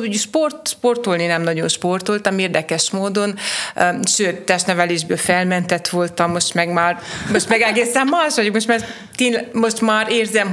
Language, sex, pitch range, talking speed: Hungarian, female, 175-205 Hz, 130 wpm